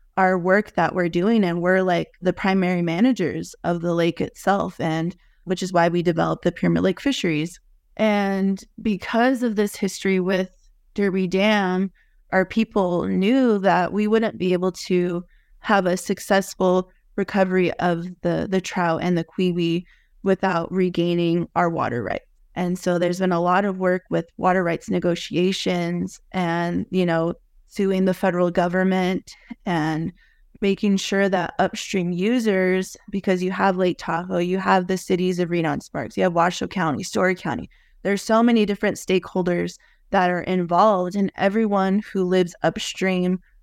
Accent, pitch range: American, 175-195 Hz